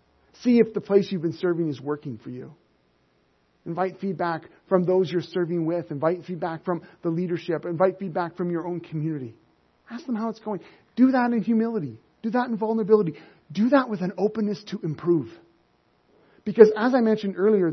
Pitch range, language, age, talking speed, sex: 150-210 Hz, English, 40-59, 185 wpm, male